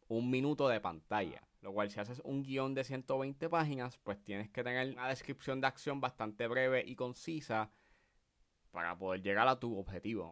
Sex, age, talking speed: male, 20-39, 180 wpm